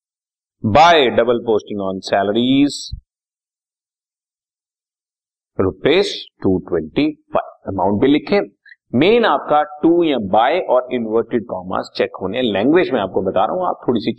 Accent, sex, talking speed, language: native, male, 125 wpm, Hindi